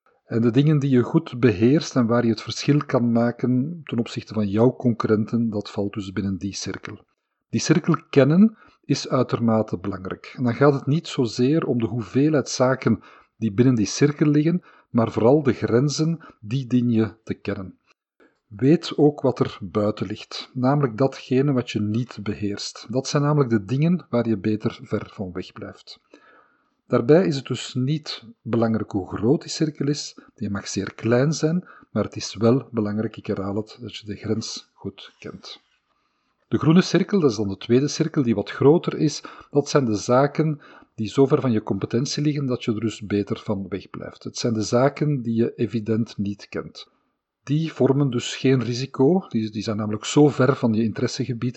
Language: Dutch